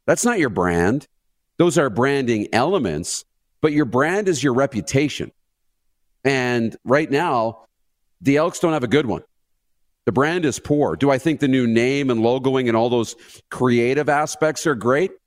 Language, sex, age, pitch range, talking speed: English, male, 40-59, 110-140 Hz, 170 wpm